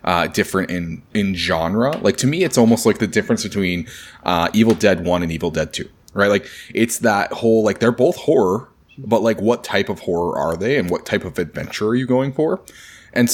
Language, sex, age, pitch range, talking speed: English, male, 20-39, 90-115 Hz, 220 wpm